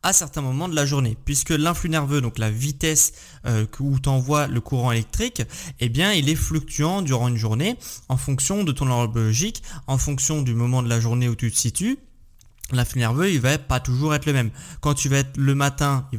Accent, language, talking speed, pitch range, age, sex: French, French, 210 wpm, 120-160 Hz, 20-39, male